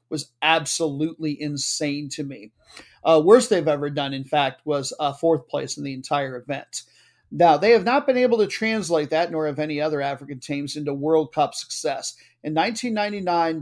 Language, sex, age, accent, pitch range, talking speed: English, male, 40-59, American, 145-185 Hz, 180 wpm